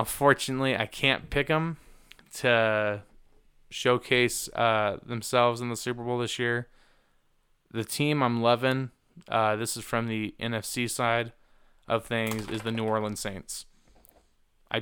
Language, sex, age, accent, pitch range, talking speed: English, male, 20-39, American, 110-125 Hz, 140 wpm